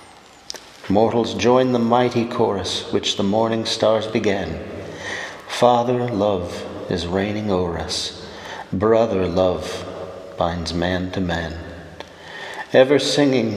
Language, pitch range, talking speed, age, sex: English, 90-120 Hz, 105 wpm, 50-69, male